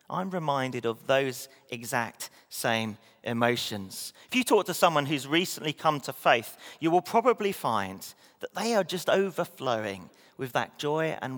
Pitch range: 120-190 Hz